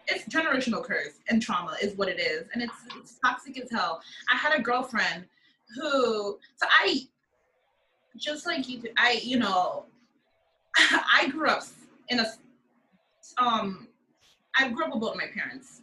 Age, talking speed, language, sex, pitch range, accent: 20-39, 150 wpm, English, female, 225-275 Hz, American